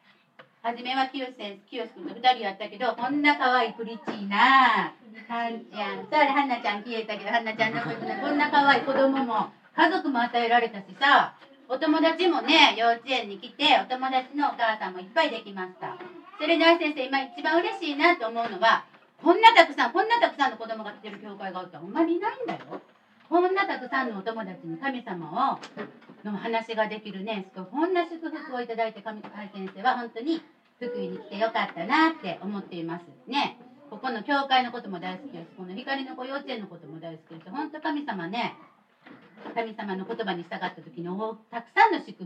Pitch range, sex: 200-295 Hz, female